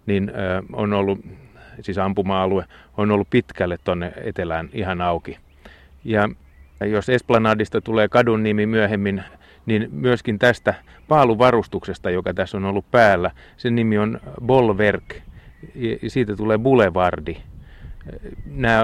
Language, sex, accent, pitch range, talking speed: Finnish, male, native, 90-110 Hz, 120 wpm